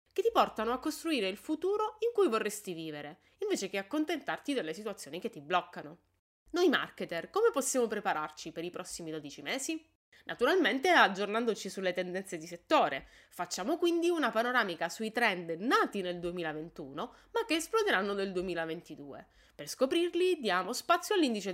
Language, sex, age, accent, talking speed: Italian, female, 20-39, native, 150 wpm